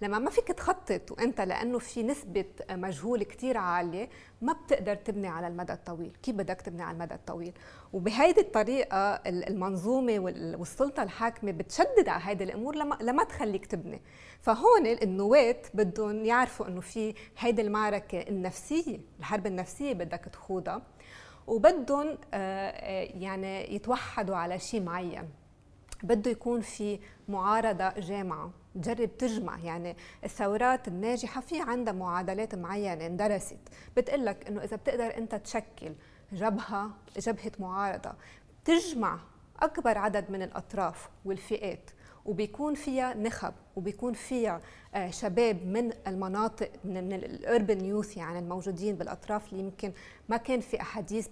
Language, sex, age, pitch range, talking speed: Arabic, female, 20-39, 190-235 Hz, 120 wpm